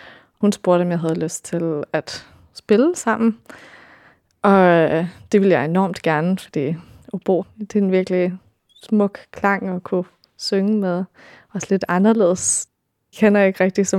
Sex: female